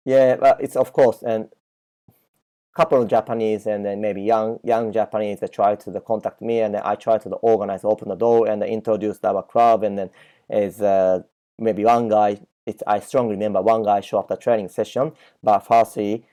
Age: 30-49